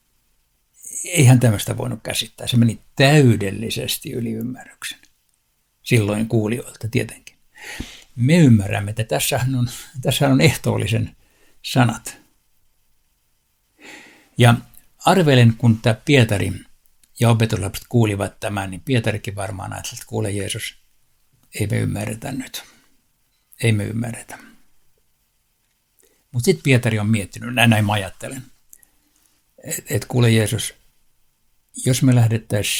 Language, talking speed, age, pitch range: Finnish, 105 wpm, 60-79, 110-125 Hz